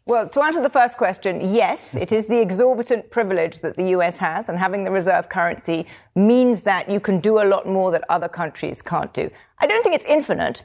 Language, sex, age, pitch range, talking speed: English, female, 40-59, 185-255 Hz, 220 wpm